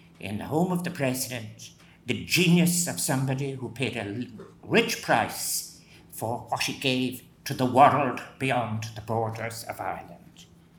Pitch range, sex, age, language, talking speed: 125-150 Hz, male, 60-79, English, 150 wpm